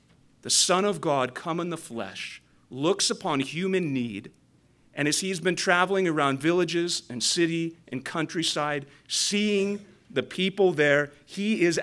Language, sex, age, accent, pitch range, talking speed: English, male, 40-59, American, 130-180 Hz, 145 wpm